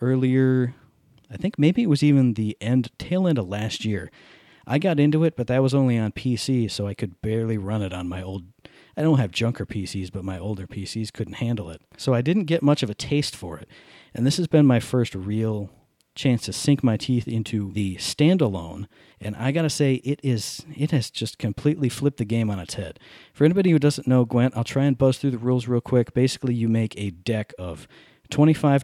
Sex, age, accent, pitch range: male, 40-59, American, 105-135 Hz